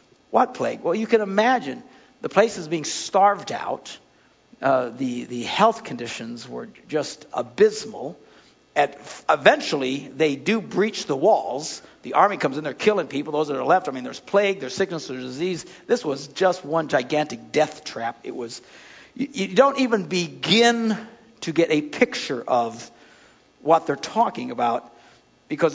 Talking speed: 165 wpm